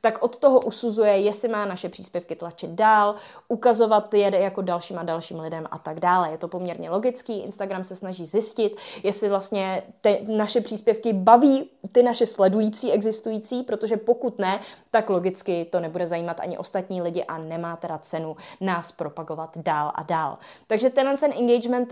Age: 20-39